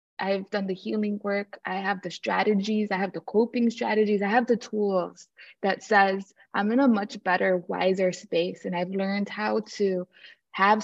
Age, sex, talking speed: 20-39, female, 185 wpm